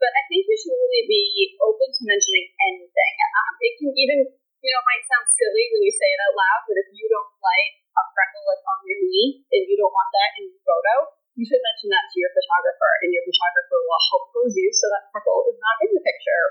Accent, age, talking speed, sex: American, 30-49, 245 wpm, female